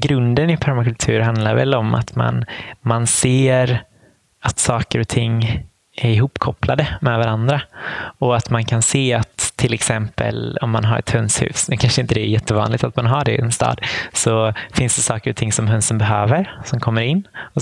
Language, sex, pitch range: Swedish, male, 110-125 Hz